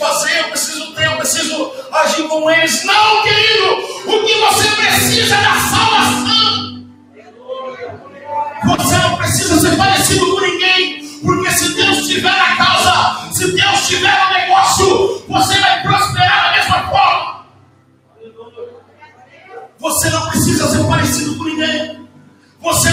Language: Portuguese